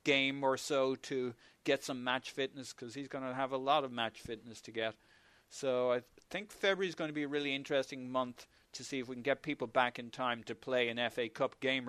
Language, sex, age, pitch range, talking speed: English, male, 40-59, 115-135 Hz, 240 wpm